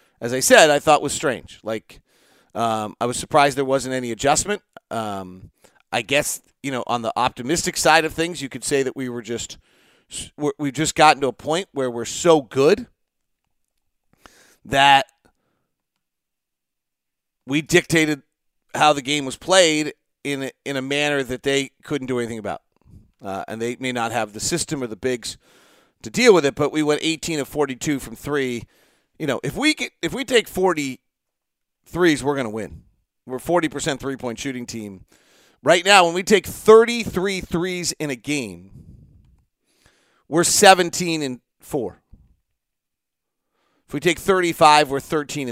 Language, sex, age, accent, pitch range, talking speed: English, male, 40-59, American, 125-165 Hz, 160 wpm